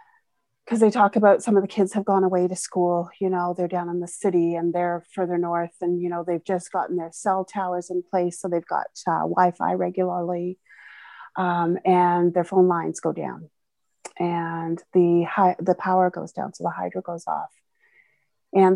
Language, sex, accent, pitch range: English, female, American, 175-205 Hz